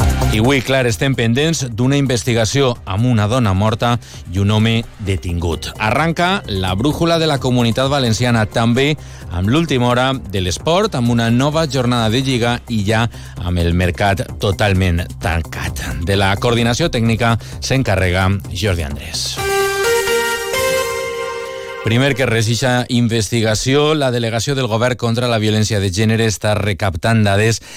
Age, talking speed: 40-59, 145 wpm